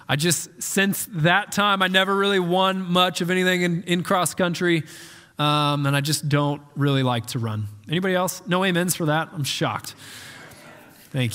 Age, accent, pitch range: 20-39, American, 145-185 Hz